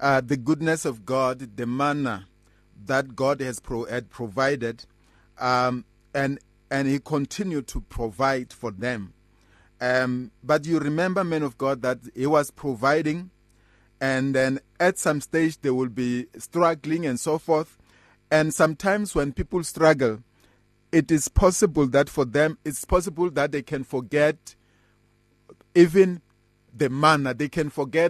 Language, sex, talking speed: English, male, 140 wpm